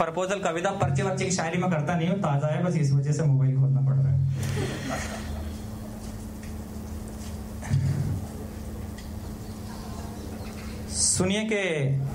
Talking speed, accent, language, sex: 95 wpm, native, Hindi, male